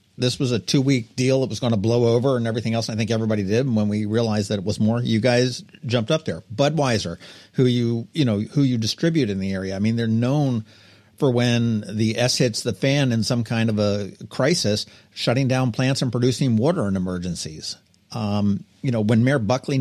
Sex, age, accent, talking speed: male, 50-69, American, 220 wpm